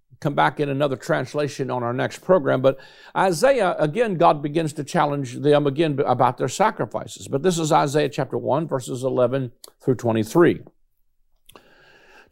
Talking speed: 150 wpm